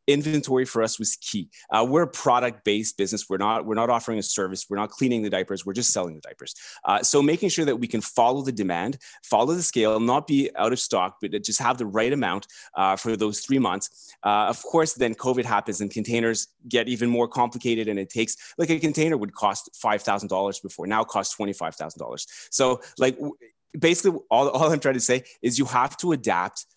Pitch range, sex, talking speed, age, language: 105-135 Hz, male, 225 wpm, 30-49, English